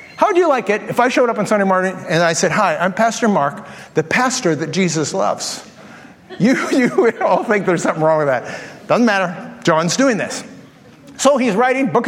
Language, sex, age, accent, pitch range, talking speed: English, male, 50-69, American, 185-255 Hz, 210 wpm